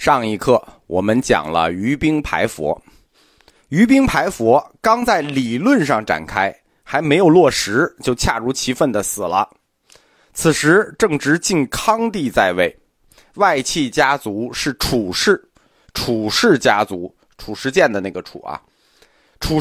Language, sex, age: Chinese, male, 30-49